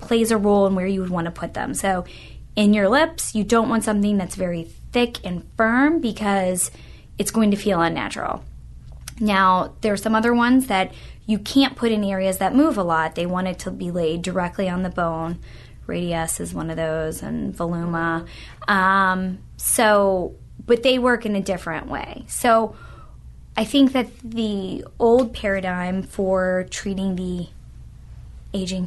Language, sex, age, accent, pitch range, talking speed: English, female, 10-29, American, 175-220 Hz, 170 wpm